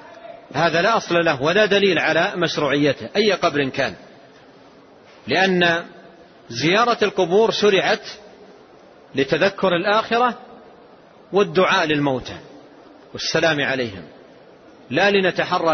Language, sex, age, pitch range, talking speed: Arabic, male, 40-59, 155-200 Hz, 90 wpm